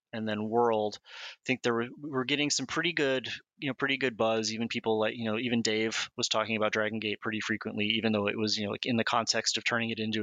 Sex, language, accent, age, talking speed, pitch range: male, English, American, 30-49, 270 wpm, 110-125 Hz